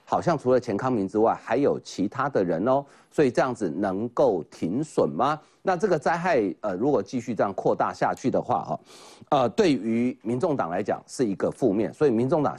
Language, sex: Chinese, male